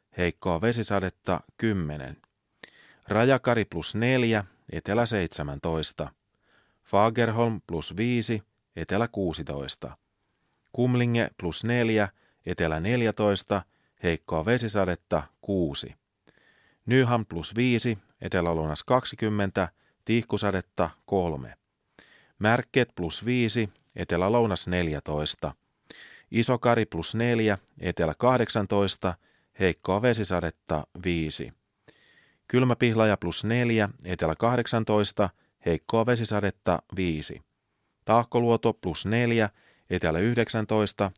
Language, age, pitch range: Finnish, 30-49, 90-115 Hz